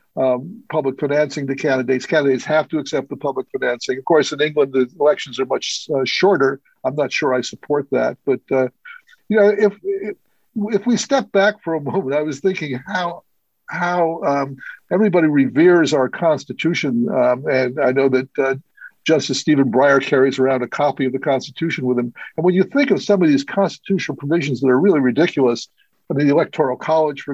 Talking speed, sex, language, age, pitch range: 195 wpm, male, English, 60-79, 135-180 Hz